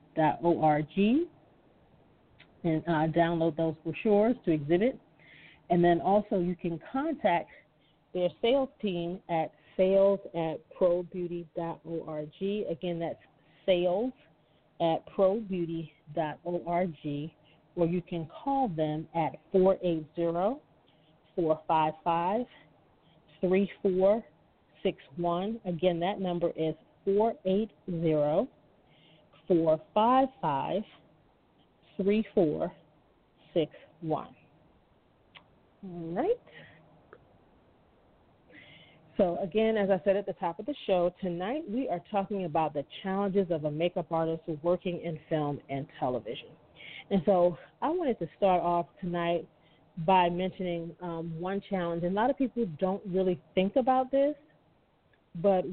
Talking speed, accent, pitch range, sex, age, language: 105 wpm, American, 160-195 Hz, female, 40-59, English